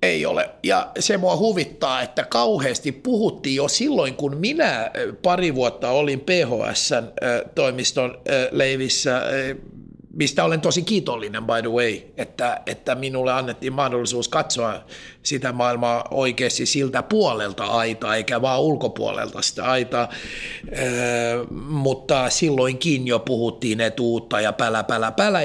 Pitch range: 120-175 Hz